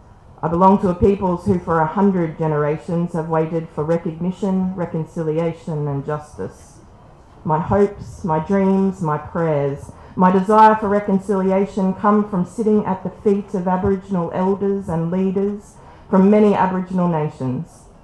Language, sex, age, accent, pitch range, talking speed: English, female, 40-59, Australian, 155-195 Hz, 140 wpm